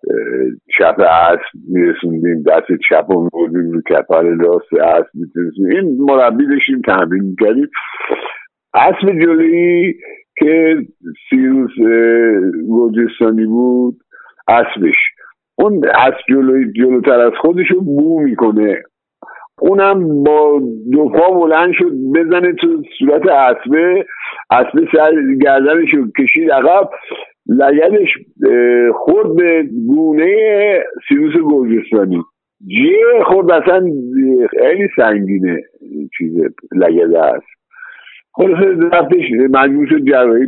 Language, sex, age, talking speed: Persian, male, 60-79, 95 wpm